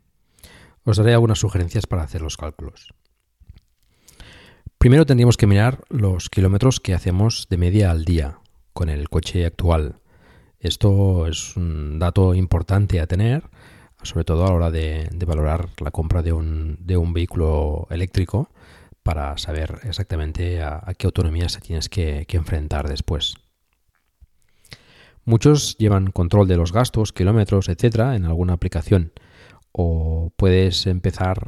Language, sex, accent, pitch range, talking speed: Spanish, male, Spanish, 80-100 Hz, 140 wpm